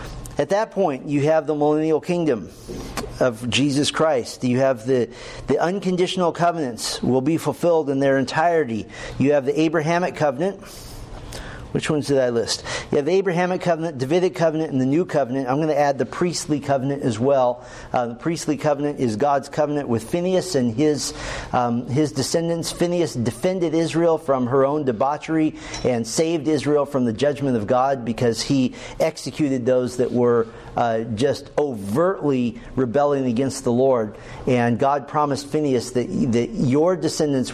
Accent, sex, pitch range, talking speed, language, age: American, male, 125-155 Hz, 165 wpm, English, 50-69